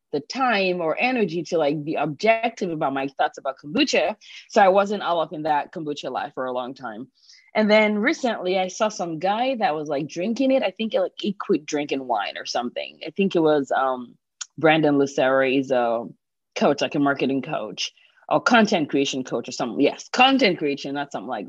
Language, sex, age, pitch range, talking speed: English, female, 20-39, 135-195 Hz, 205 wpm